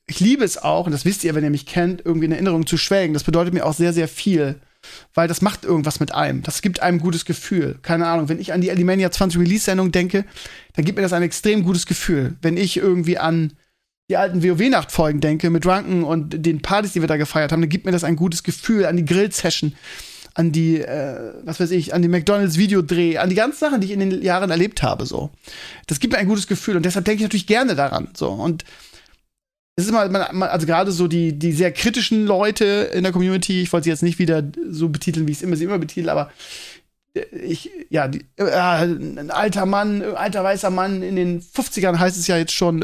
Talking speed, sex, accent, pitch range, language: 230 wpm, male, German, 165-195 Hz, German